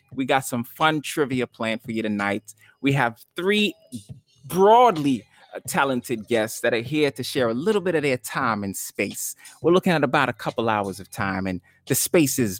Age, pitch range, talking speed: 30-49, 105-140 Hz, 195 wpm